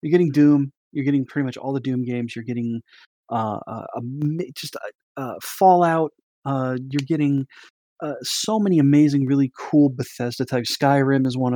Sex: male